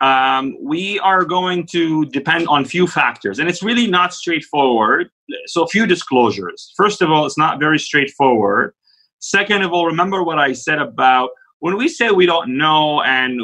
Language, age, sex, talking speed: English, 30-49, male, 185 wpm